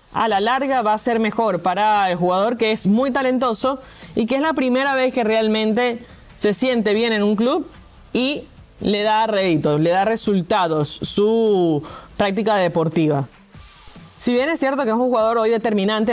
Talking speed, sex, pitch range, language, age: 180 wpm, female, 195-250 Hz, English, 20-39